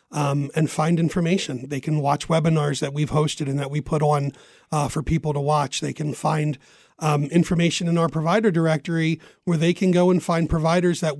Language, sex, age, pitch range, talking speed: English, male, 40-59, 150-175 Hz, 200 wpm